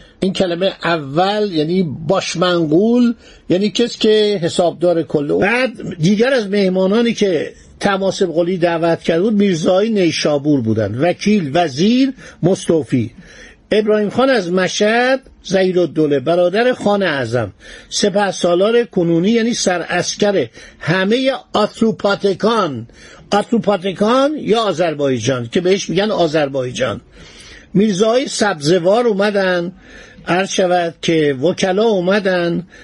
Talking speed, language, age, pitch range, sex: 100 wpm, Persian, 50-69, 165-205 Hz, male